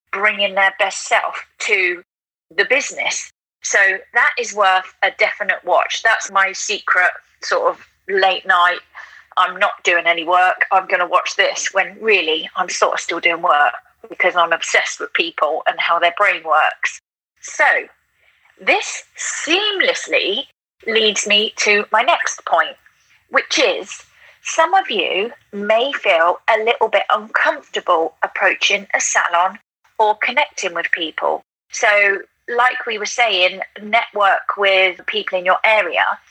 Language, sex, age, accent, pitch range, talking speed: English, female, 30-49, British, 190-250 Hz, 140 wpm